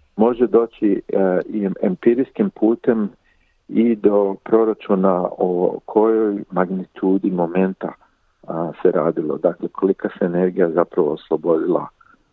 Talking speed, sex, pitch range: 105 wpm, male, 90-105 Hz